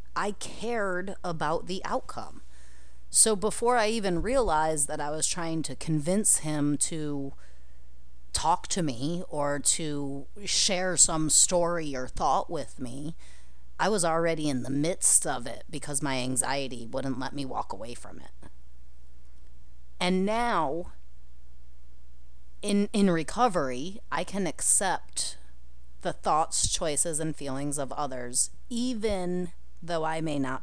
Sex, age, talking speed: female, 30-49, 135 wpm